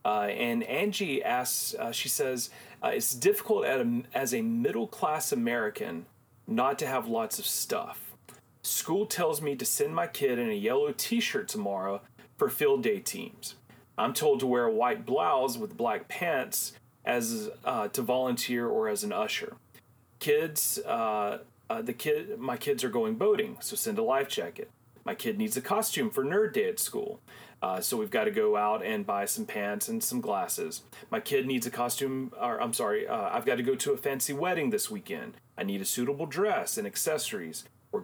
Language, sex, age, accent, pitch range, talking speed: English, male, 40-59, American, 140-235 Hz, 190 wpm